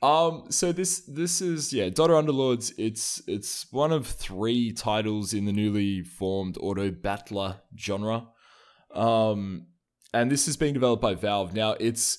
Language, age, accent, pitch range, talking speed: English, 20-39, Australian, 95-125 Hz, 155 wpm